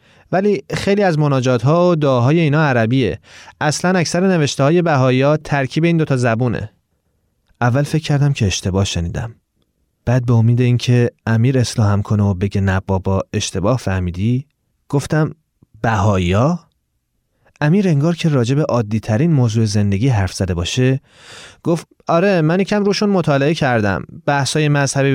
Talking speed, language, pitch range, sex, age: 140 wpm, Persian, 105-140 Hz, male, 30-49